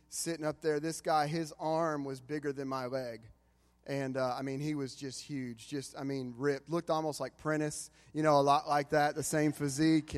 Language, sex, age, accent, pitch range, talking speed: English, male, 30-49, American, 150-185 Hz, 220 wpm